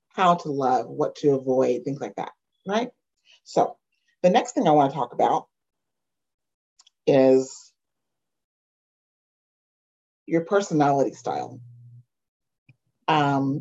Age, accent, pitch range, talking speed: 40-59, American, 135-195 Hz, 105 wpm